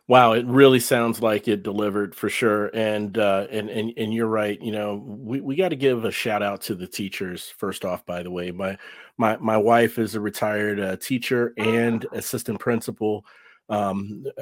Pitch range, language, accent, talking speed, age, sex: 105-125 Hz, English, American, 190 wpm, 40-59, male